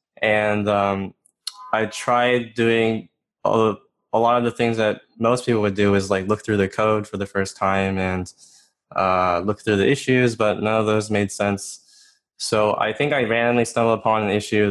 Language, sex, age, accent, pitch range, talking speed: English, male, 20-39, American, 100-115 Hz, 190 wpm